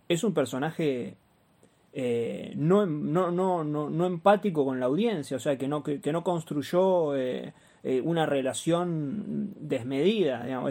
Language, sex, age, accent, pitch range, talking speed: Spanish, male, 20-39, Argentinian, 135-175 Hz, 140 wpm